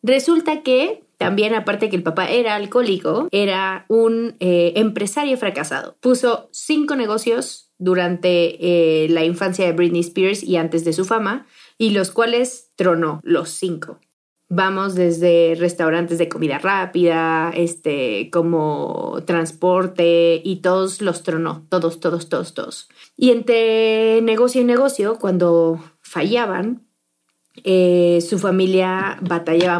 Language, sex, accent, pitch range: Spanish, female, Mexican, 170-220 Hz